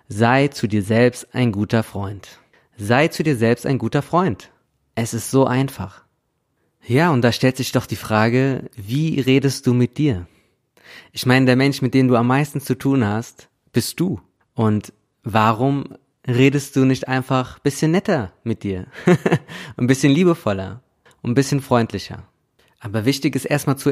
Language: German